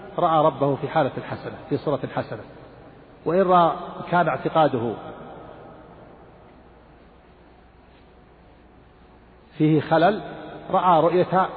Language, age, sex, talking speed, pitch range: Arabic, 50-69, male, 85 wpm, 135-175 Hz